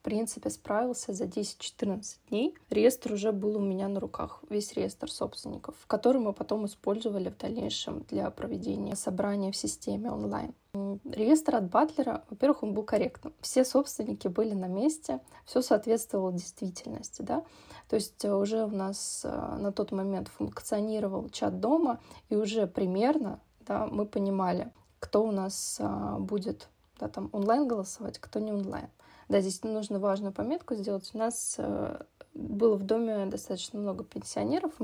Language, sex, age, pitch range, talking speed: Russian, female, 20-39, 195-235 Hz, 145 wpm